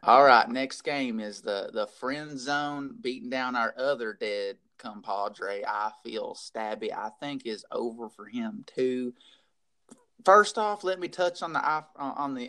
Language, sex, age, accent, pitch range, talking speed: English, male, 30-49, American, 140-225 Hz, 165 wpm